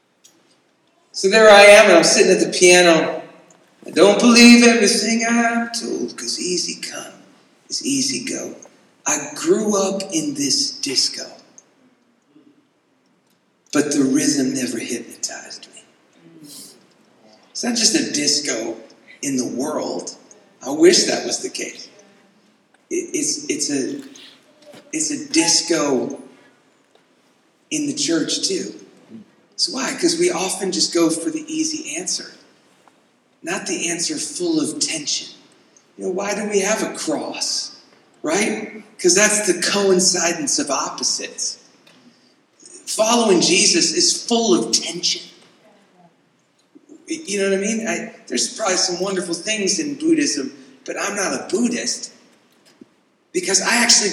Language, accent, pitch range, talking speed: English, American, 205-315 Hz, 130 wpm